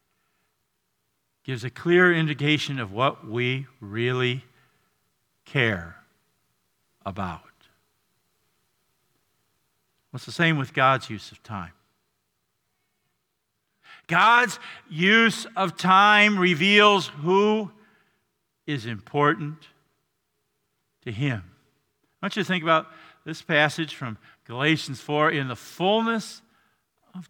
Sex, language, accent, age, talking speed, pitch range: male, English, American, 50-69, 95 wpm, 145-205 Hz